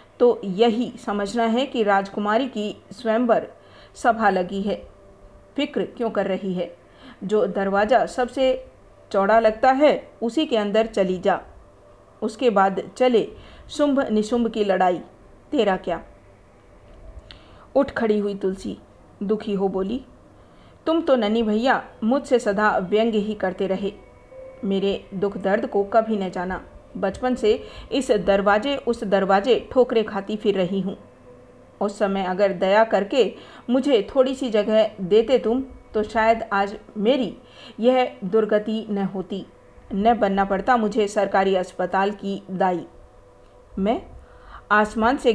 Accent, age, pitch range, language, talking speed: native, 50-69, 195-235 Hz, Hindi, 135 wpm